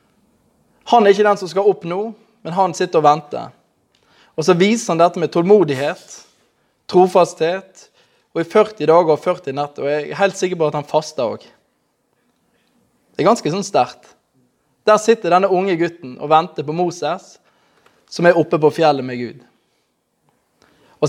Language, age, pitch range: English, 20-39, 155-200 Hz